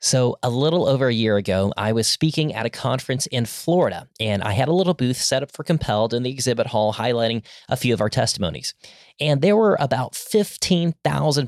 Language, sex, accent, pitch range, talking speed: English, male, American, 115-155 Hz, 210 wpm